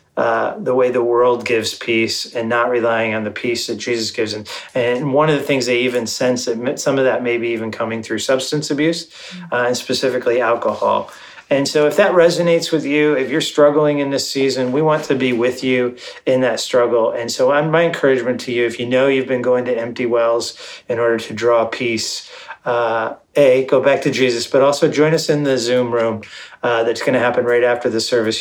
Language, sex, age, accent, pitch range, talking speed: English, male, 30-49, American, 115-135 Hz, 220 wpm